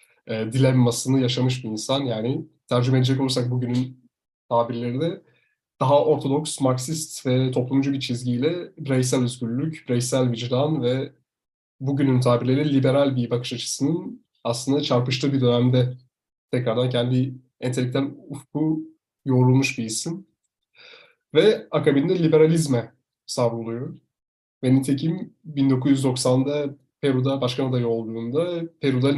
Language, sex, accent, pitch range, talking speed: Turkish, male, native, 125-140 Hz, 110 wpm